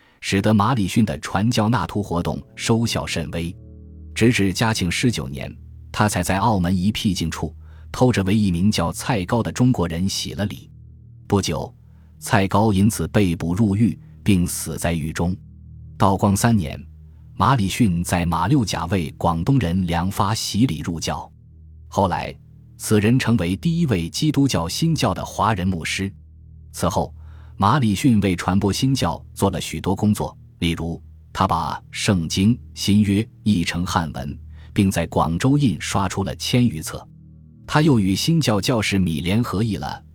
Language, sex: Chinese, male